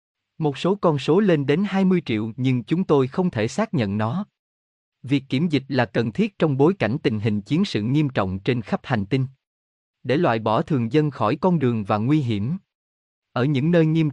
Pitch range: 110-160 Hz